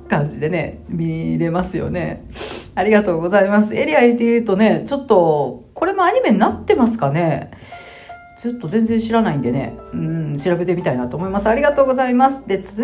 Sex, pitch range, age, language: female, 195-255 Hz, 40-59, Japanese